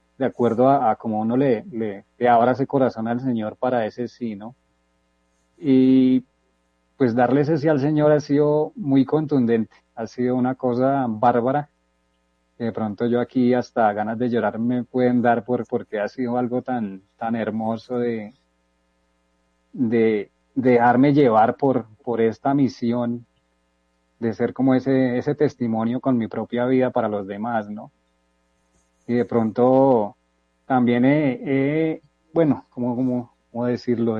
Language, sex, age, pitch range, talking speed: Spanish, male, 30-49, 110-135 Hz, 155 wpm